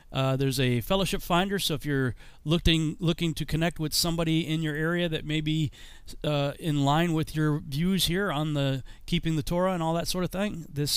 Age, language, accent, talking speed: 40-59, English, American, 215 wpm